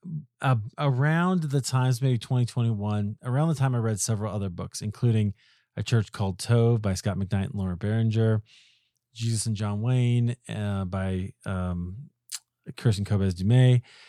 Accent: American